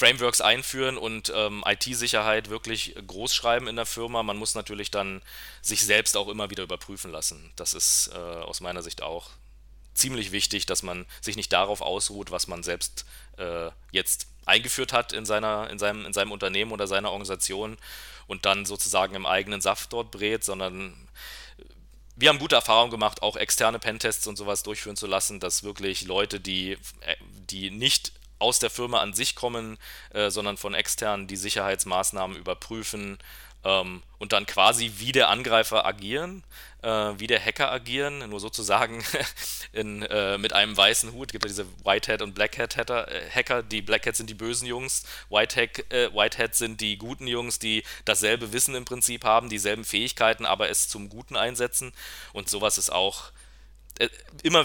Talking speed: 165 wpm